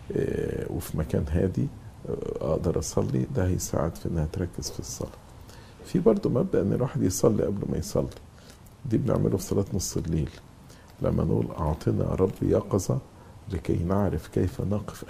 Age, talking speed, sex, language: 50-69, 145 wpm, male, English